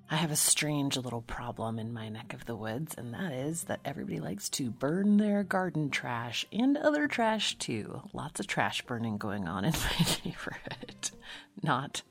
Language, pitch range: English, 115-160 Hz